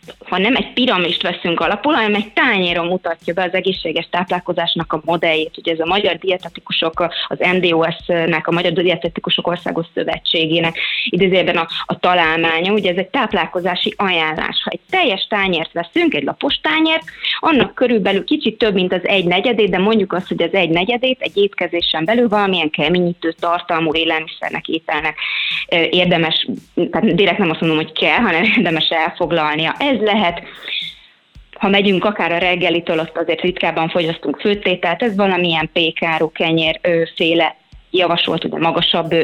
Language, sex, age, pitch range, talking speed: Hungarian, female, 20-39, 170-200 Hz, 155 wpm